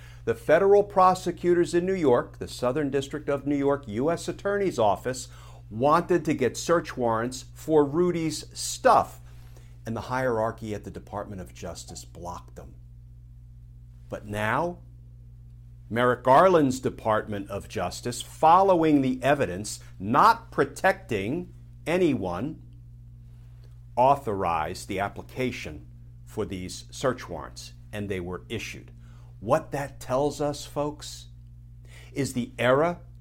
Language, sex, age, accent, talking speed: English, male, 50-69, American, 115 wpm